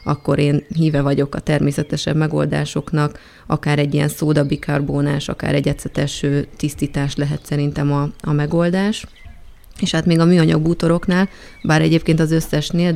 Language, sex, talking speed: Hungarian, female, 135 wpm